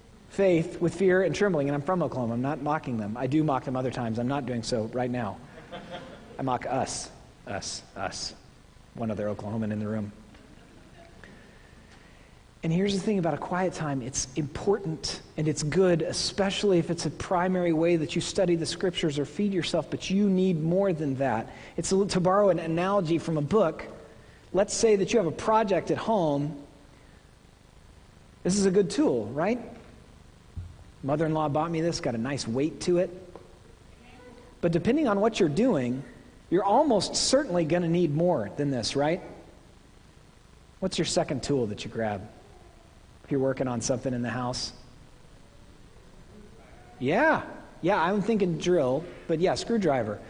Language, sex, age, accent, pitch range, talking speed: English, male, 40-59, American, 130-190 Hz, 170 wpm